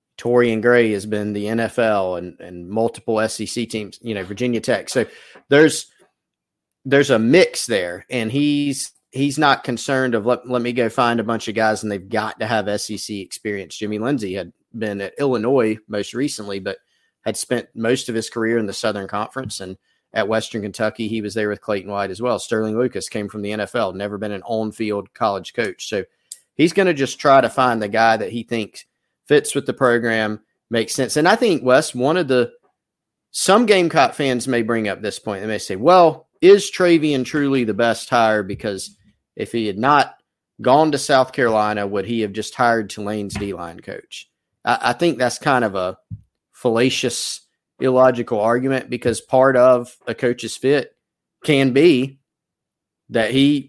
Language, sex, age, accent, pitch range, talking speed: English, male, 30-49, American, 105-130 Hz, 190 wpm